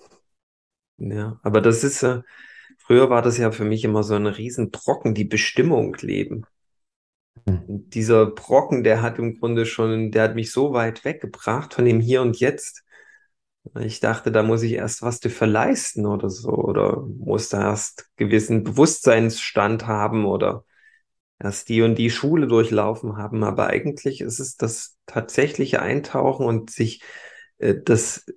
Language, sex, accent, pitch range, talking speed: German, male, German, 105-120 Hz, 155 wpm